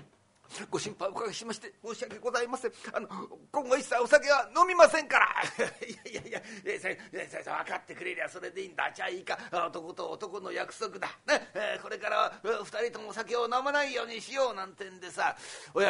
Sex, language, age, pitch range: male, Japanese, 40-59, 190-260 Hz